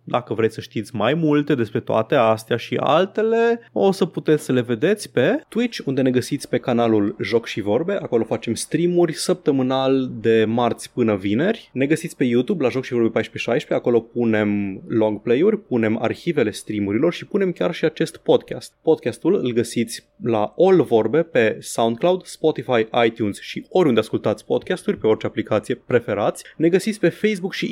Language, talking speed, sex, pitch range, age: Romanian, 170 wpm, male, 115-165 Hz, 20-39